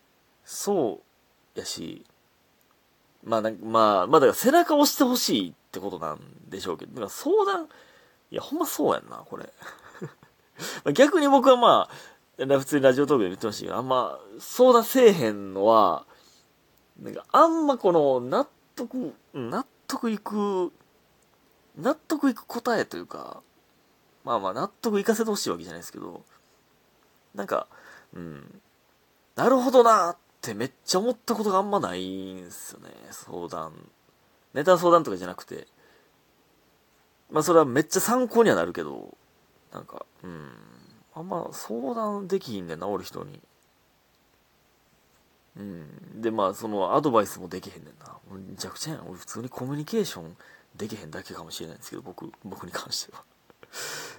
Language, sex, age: Japanese, male, 30-49